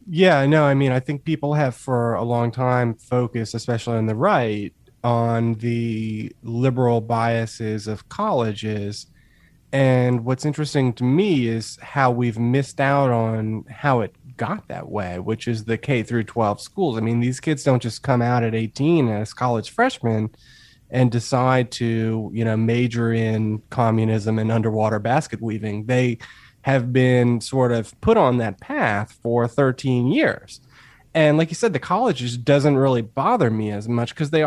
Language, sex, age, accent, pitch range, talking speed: English, male, 30-49, American, 115-130 Hz, 170 wpm